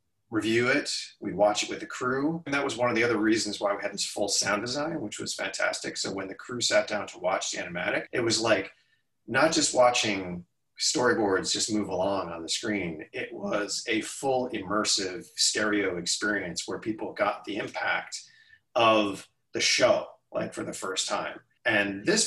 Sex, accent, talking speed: male, American, 190 wpm